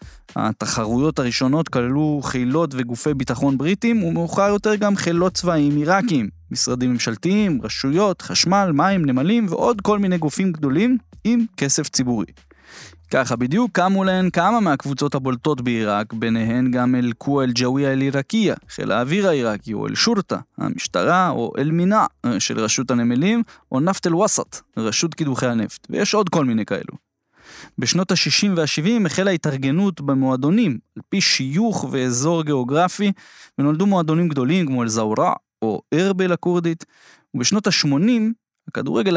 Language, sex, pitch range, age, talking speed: Hebrew, male, 125-180 Hz, 20-39, 130 wpm